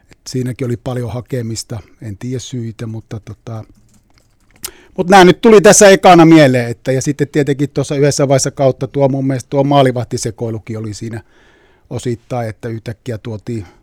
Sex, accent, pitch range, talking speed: male, native, 115-135 Hz, 150 wpm